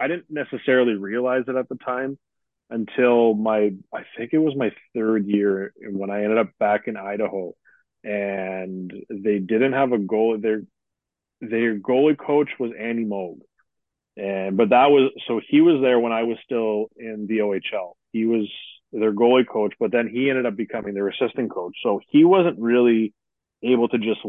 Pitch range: 100-115 Hz